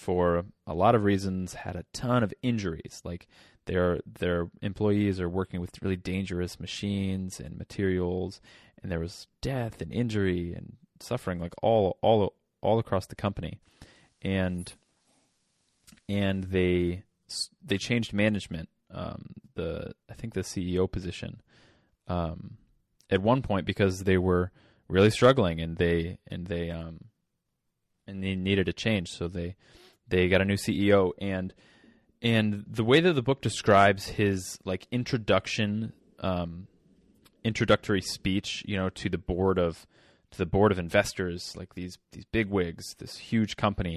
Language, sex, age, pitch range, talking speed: English, male, 20-39, 90-105 Hz, 150 wpm